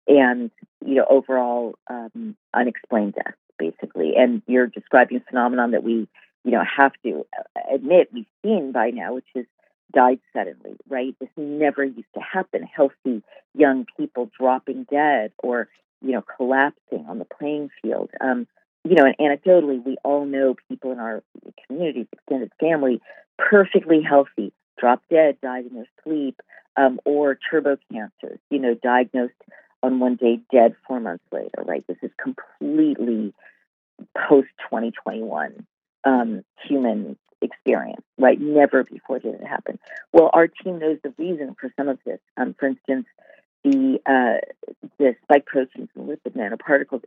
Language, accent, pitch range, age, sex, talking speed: English, American, 125-155 Hz, 40-59, female, 145 wpm